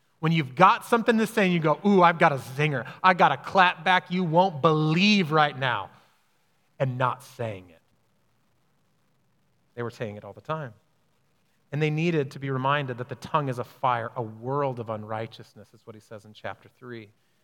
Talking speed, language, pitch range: 195 wpm, English, 125-175 Hz